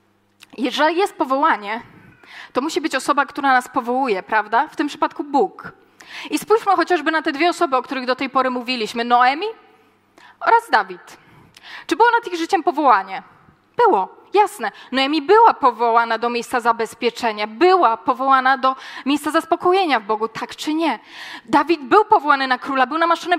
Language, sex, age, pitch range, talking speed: Polish, female, 20-39, 260-345 Hz, 160 wpm